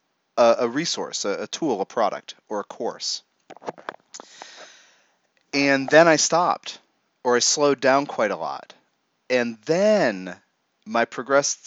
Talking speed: 135 wpm